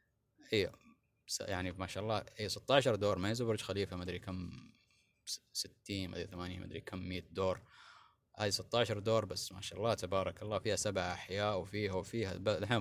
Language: Arabic